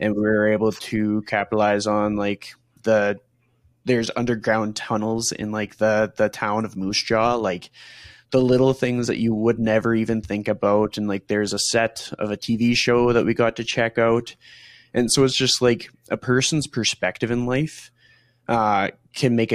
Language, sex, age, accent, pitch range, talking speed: English, male, 20-39, American, 105-120 Hz, 180 wpm